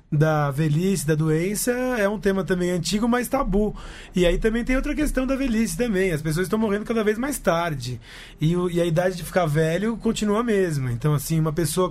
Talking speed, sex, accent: 210 wpm, male, Brazilian